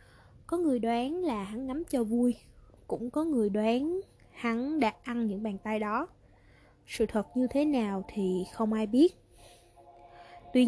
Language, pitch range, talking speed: Vietnamese, 210-265 Hz, 165 wpm